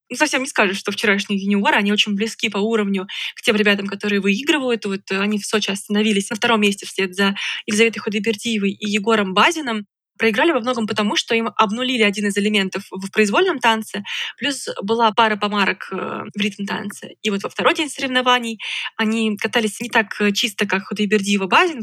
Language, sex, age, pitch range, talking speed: Russian, female, 20-39, 200-225 Hz, 180 wpm